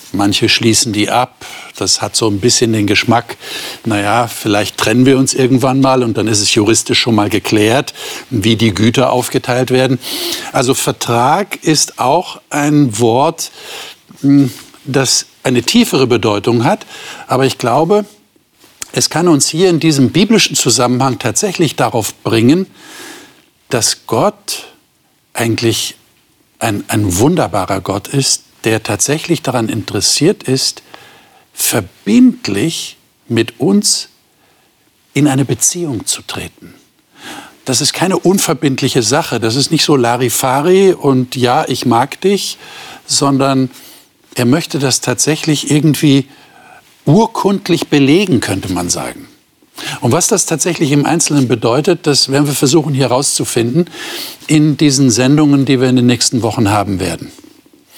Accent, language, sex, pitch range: German, German, male, 120-160 Hz